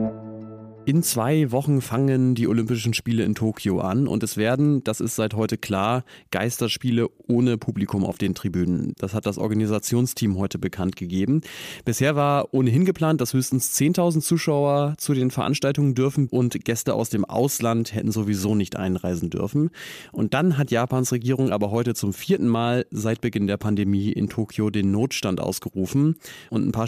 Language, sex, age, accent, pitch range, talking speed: German, male, 30-49, German, 105-130 Hz, 165 wpm